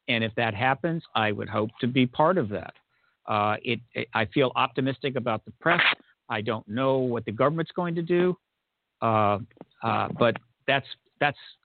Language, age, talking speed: English, 50-69, 180 wpm